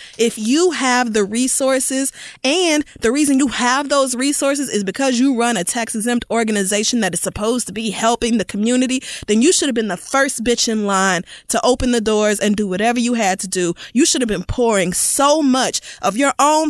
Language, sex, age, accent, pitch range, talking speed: English, female, 20-39, American, 210-290 Hz, 210 wpm